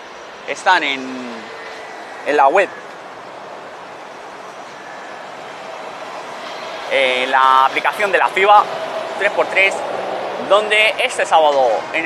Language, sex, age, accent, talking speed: Spanish, male, 30-49, Spanish, 80 wpm